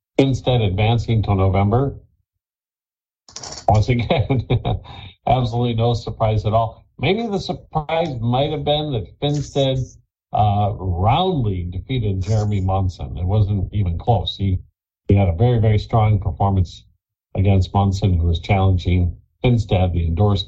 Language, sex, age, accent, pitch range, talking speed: English, male, 50-69, American, 90-120 Hz, 130 wpm